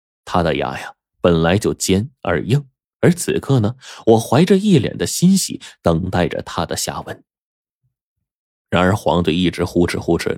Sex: male